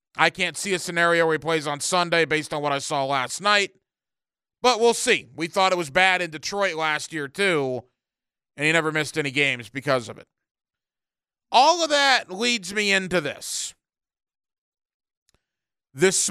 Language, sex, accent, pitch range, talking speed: English, male, American, 165-205 Hz, 175 wpm